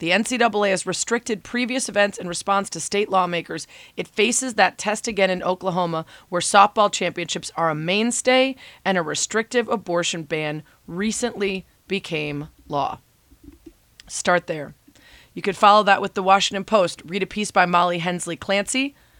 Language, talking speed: English, 155 wpm